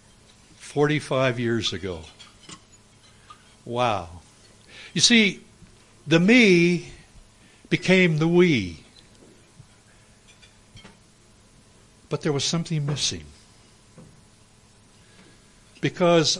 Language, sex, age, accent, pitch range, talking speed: English, male, 60-79, American, 110-175 Hz, 60 wpm